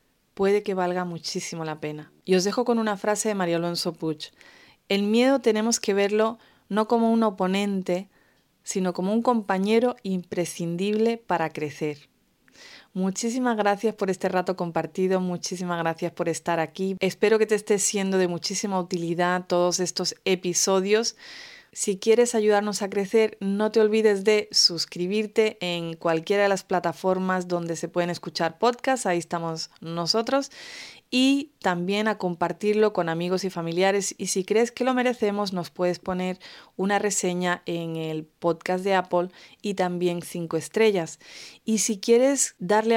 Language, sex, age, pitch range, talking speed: English, female, 30-49, 175-215 Hz, 150 wpm